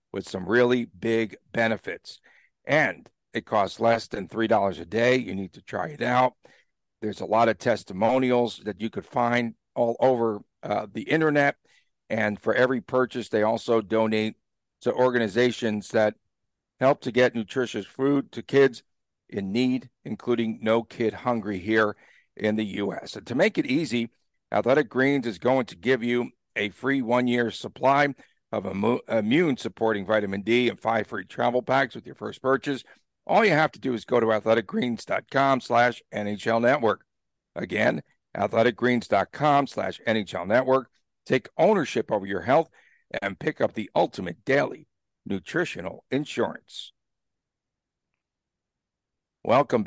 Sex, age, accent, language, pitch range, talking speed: male, 50-69, American, English, 110-130 Hz, 145 wpm